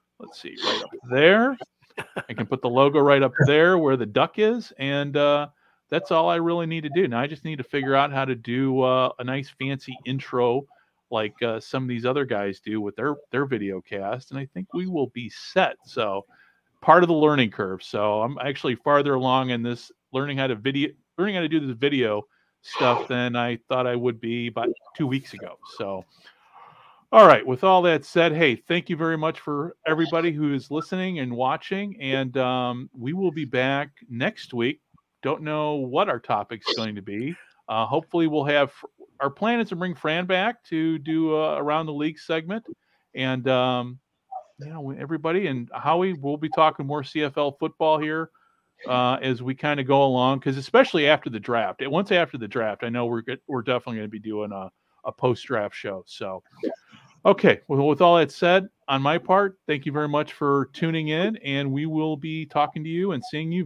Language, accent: English, American